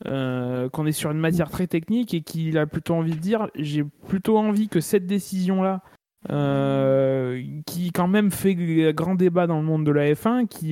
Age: 20-39